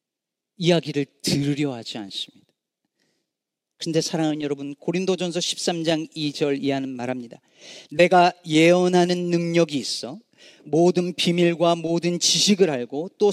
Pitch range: 150-215 Hz